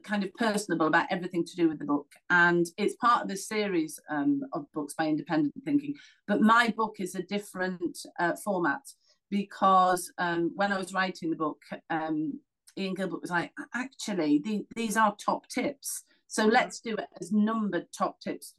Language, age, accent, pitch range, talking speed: English, 50-69, British, 170-225 Hz, 185 wpm